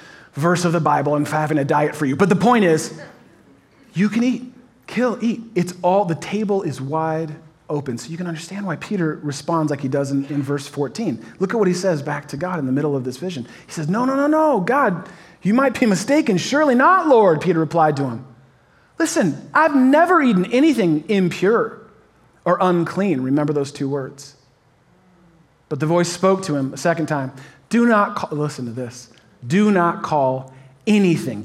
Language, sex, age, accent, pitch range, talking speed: English, male, 30-49, American, 145-190 Hz, 195 wpm